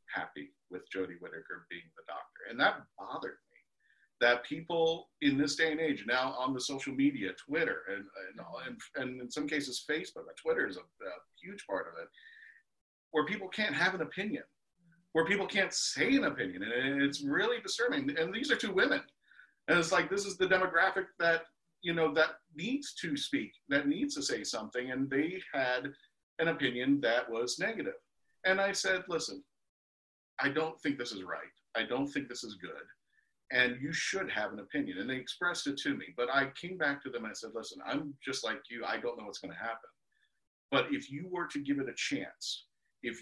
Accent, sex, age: American, male, 40-59